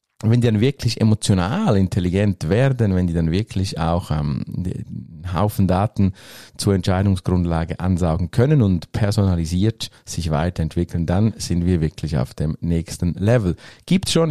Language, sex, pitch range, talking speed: German, male, 90-115 Hz, 145 wpm